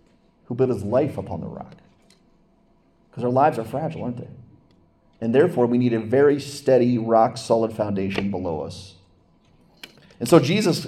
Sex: male